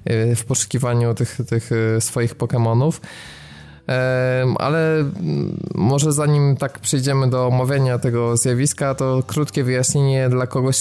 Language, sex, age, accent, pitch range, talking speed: Polish, male, 20-39, native, 110-130 Hz, 110 wpm